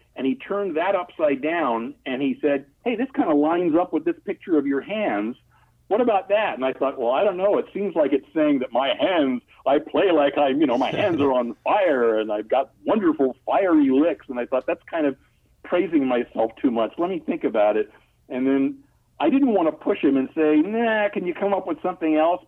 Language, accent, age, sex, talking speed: English, American, 60-79, male, 240 wpm